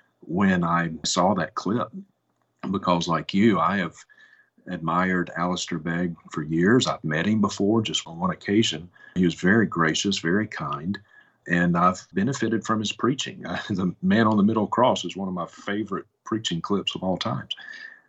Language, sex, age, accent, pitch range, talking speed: English, male, 50-69, American, 85-110 Hz, 170 wpm